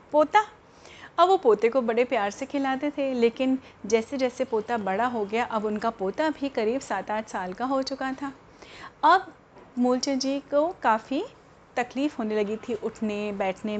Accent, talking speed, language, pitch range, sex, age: native, 175 wpm, Hindi, 215-280 Hz, female, 30-49